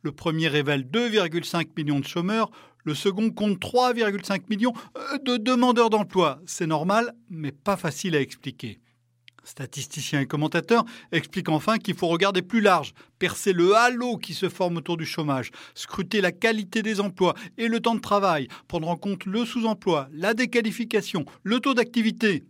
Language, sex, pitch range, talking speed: French, male, 155-220 Hz, 165 wpm